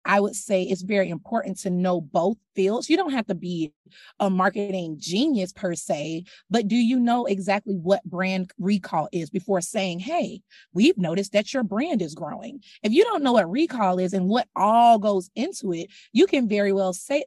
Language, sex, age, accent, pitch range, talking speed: English, female, 30-49, American, 185-235 Hz, 200 wpm